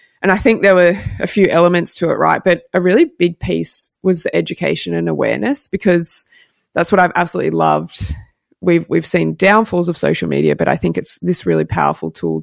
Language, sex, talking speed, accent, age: English, female, 205 wpm, Australian, 20-39